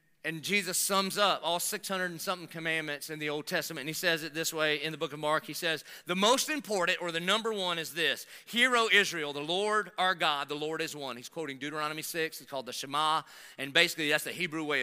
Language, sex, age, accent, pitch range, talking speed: English, male, 40-59, American, 145-190 Hz, 245 wpm